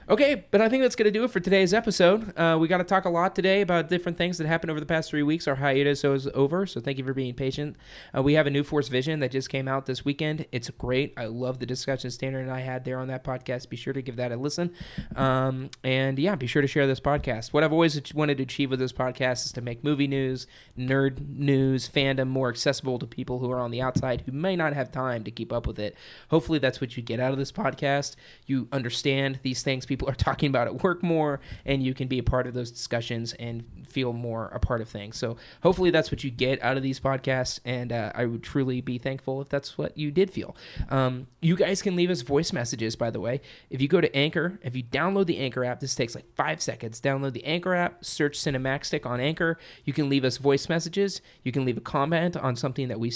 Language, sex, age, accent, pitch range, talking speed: English, male, 20-39, American, 125-150 Hz, 255 wpm